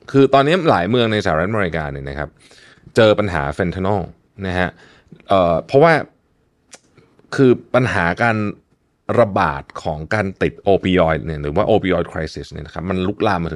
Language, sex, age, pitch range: Thai, male, 20-39, 85-120 Hz